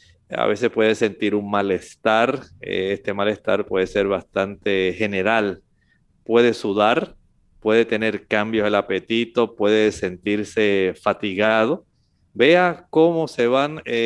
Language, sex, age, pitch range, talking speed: Spanish, male, 50-69, 105-125 Hz, 110 wpm